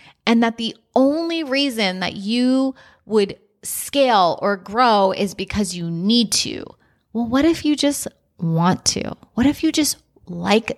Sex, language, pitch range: female, English, 200-265 Hz